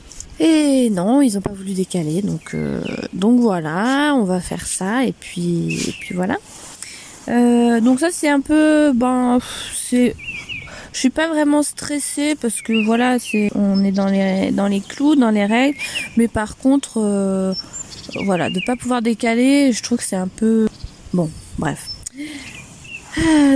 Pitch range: 195-250 Hz